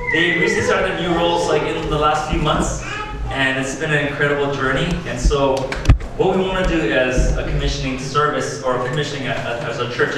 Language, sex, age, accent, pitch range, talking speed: English, male, 20-39, American, 125-160 Hz, 200 wpm